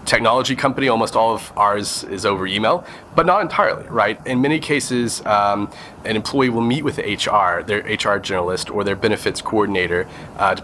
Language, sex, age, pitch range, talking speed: English, male, 30-49, 100-120 Hz, 175 wpm